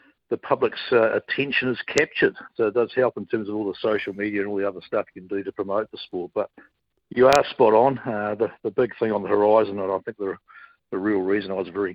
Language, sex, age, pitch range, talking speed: English, male, 50-69, 100-115 Hz, 260 wpm